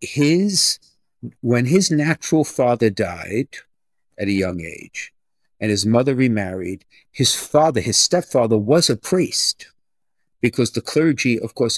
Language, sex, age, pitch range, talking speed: English, male, 50-69, 110-145 Hz, 130 wpm